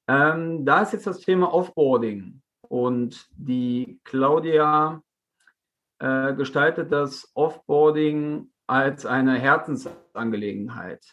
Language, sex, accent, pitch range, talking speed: German, male, German, 130-160 Hz, 85 wpm